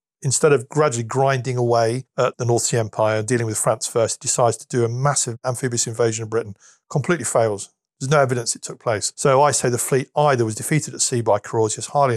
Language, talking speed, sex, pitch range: English, 220 wpm, male, 115-135 Hz